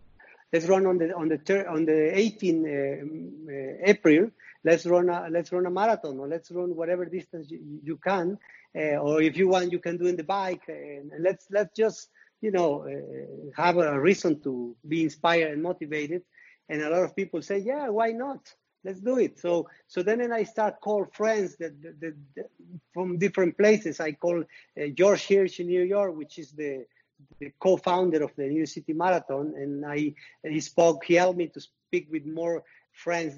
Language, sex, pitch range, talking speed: English, male, 145-180 Hz, 205 wpm